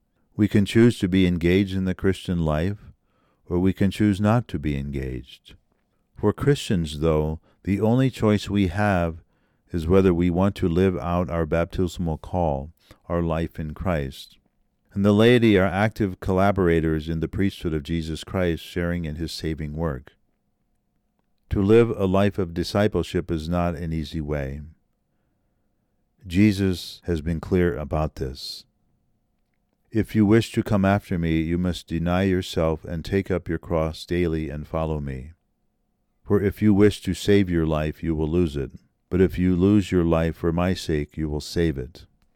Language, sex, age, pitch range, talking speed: English, male, 50-69, 80-100 Hz, 170 wpm